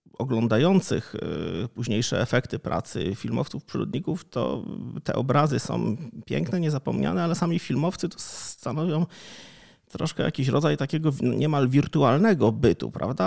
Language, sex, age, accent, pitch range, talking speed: Polish, male, 30-49, native, 125-165 Hz, 115 wpm